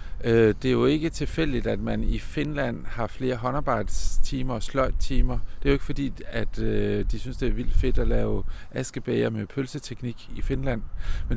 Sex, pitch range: male, 105-135 Hz